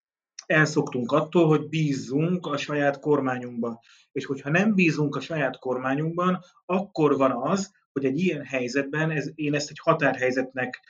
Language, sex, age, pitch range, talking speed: Hungarian, male, 30-49, 130-160 Hz, 140 wpm